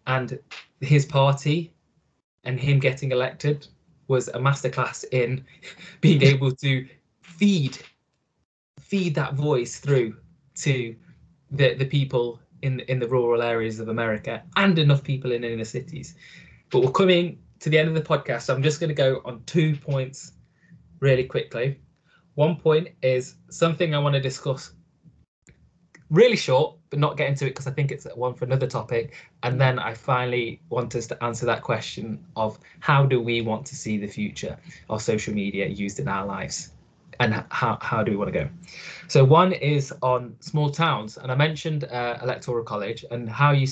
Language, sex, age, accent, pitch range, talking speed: English, male, 20-39, British, 120-150 Hz, 175 wpm